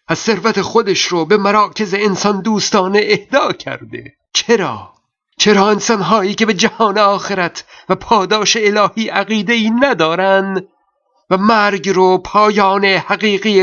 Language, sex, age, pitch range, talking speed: Persian, male, 50-69, 190-220 Hz, 125 wpm